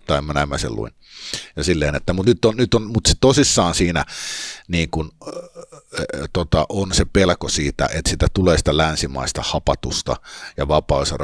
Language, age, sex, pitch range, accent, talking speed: Finnish, 50-69, male, 75-95 Hz, native, 185 wpm